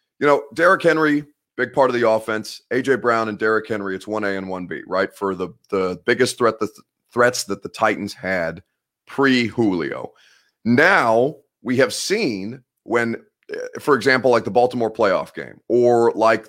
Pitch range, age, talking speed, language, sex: 100-130 Hz, 30-49, 165 wpm, English, male